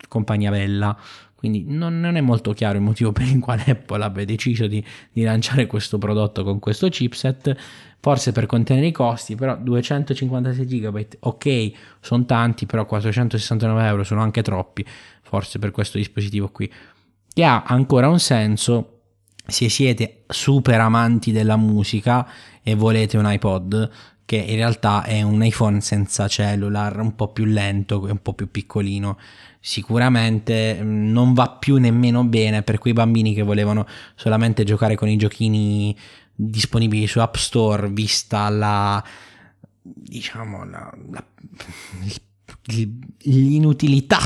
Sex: male